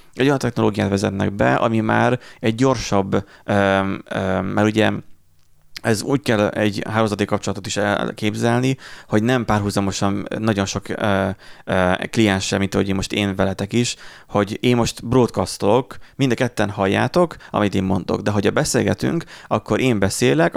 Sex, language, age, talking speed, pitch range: male, Hungarian, 30-49, 135 wpm, 100-130 Hz